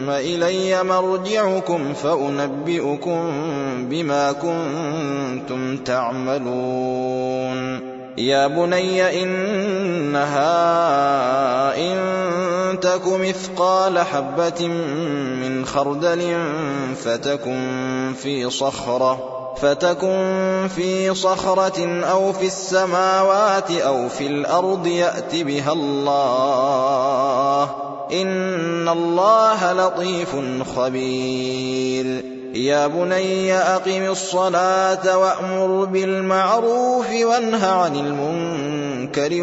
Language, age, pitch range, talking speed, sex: Arabic, 20-39, 135-185 Hz, 65 wpm, male